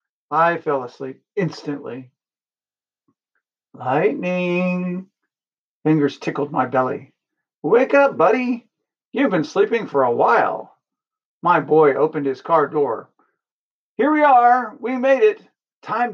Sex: male